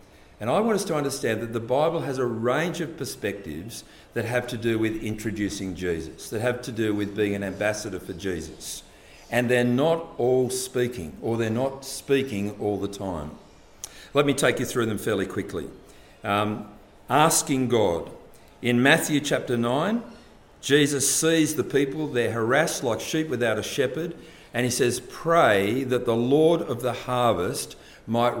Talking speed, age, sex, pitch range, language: 170 wpm, 50-69, male, 110-145 Hz, English